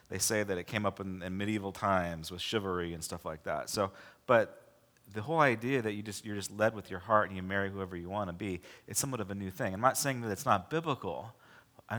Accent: American